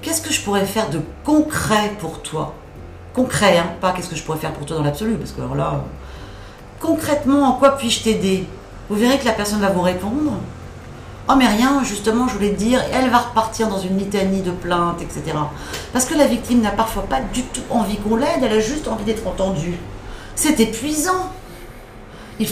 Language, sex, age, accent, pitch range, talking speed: French, female, 40-59, French, 180-250 Hz, 205 wpm